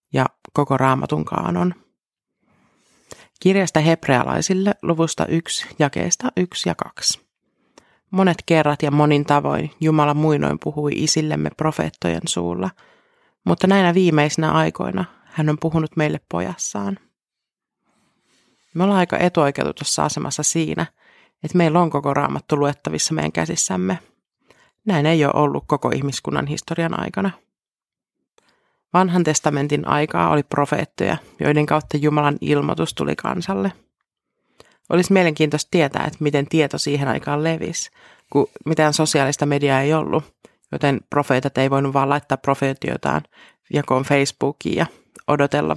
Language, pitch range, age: Finnish, 140-165 Hz, 30-49